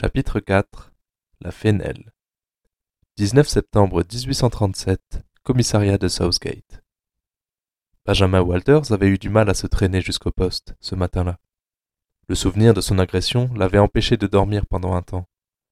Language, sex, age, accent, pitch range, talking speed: French, male, 20-39, French, 95-105 Hz, 135 wpm